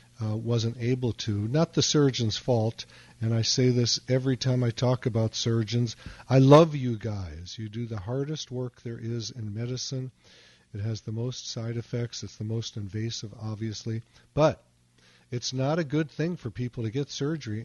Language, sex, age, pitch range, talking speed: English, male, 40-59, 105-125 Hz, 180 wpm